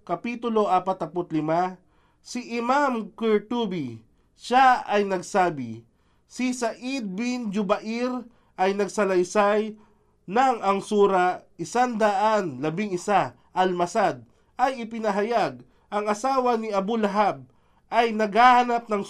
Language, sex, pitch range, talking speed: Filipino, male, 180-230 Hz, 90 wpm